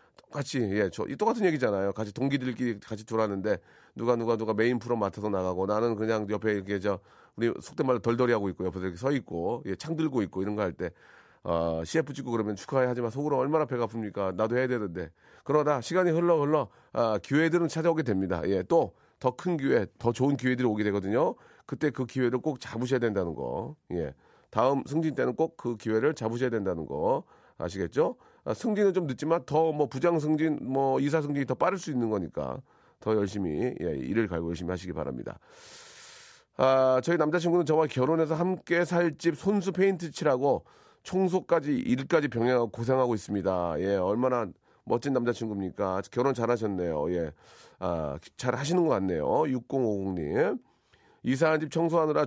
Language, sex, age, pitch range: Korean, male, 40-59, 110-160 Hz